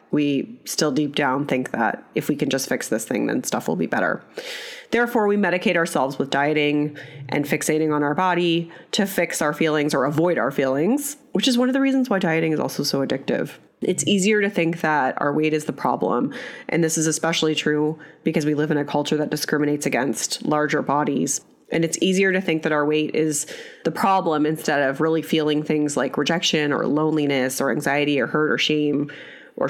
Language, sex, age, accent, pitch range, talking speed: English, female, 30-49, American, 150-180 Hz, 205 wpm